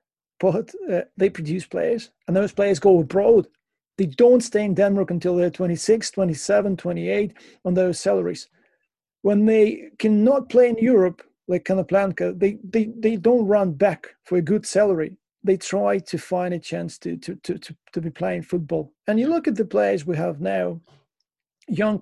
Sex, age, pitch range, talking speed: male, 30-49, 170-225 Hz, 195 wpm